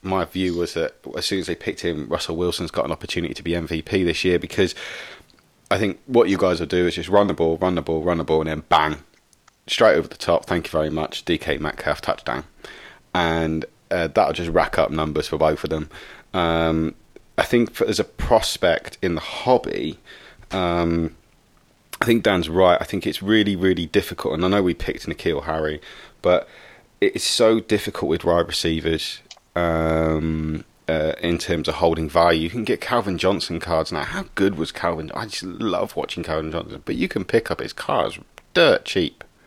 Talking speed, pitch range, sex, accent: 200 wpm, 80-90 Hz, male, British